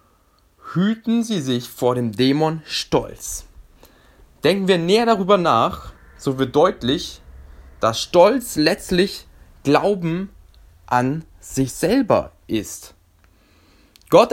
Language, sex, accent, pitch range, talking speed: German, male, German, 115-170 Hz, 100 wpm